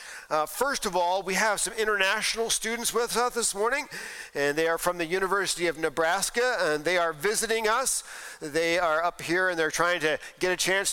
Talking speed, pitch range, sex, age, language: 205 wpm, 165-215 Hz, male, 40-59, English